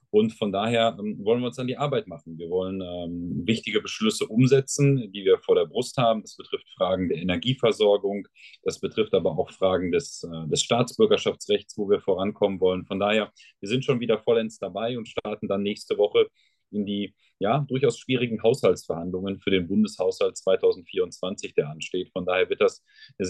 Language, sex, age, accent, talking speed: German, male, 30-49, German, 175 wpm